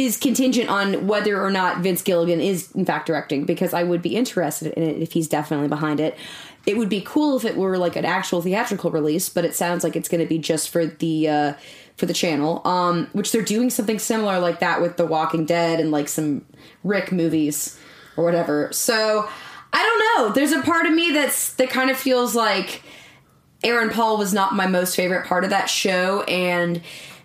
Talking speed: 215 wpm